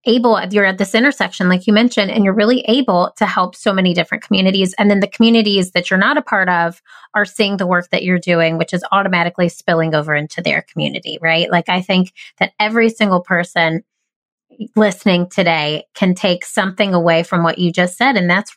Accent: American